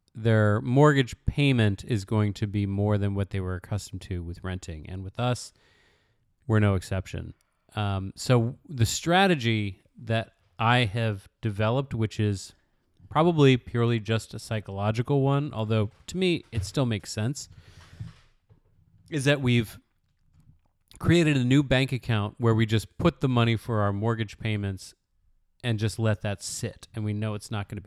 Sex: male